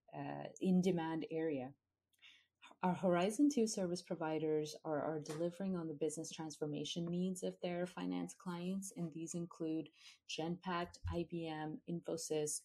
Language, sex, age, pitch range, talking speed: English, female, 30-49, 155-180 Hz, 125 wpm